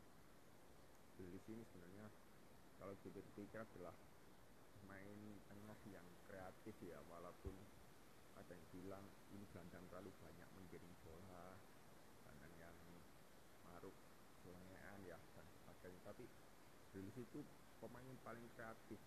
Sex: male